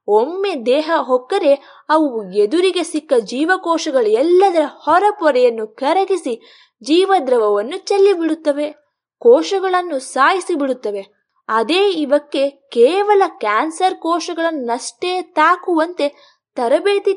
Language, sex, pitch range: Kannada, female, 275-365 Hz